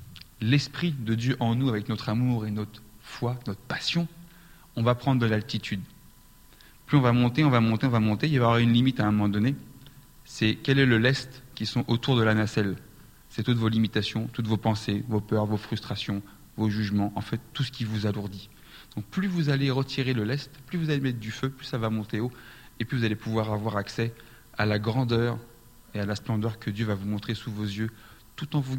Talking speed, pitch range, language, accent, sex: 235 wpm, 110-135 Hz, French, French, male